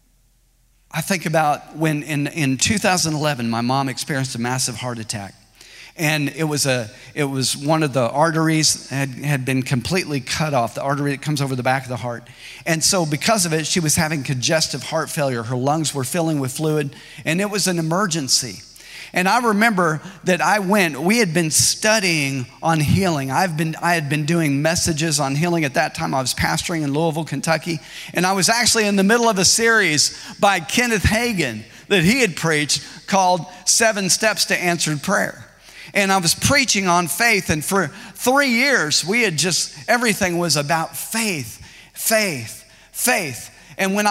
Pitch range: 140-190 Hz